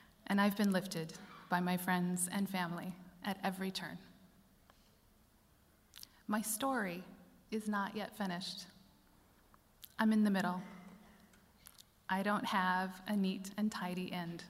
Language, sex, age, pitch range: English, female, 30-49, 180-215 Hz